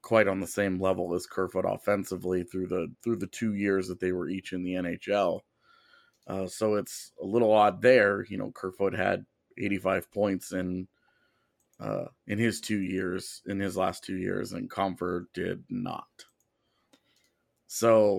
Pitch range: 100-125 Hz